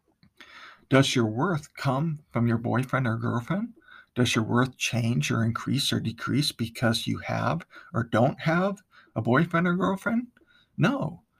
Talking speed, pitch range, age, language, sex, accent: 145 wpm, 120-170 Hz, 50-69, English, male, American